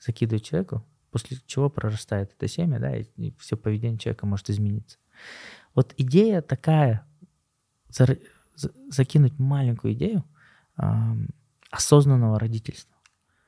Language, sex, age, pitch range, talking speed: Russian, male, 20-39, 115-135 Hz, 115 wpm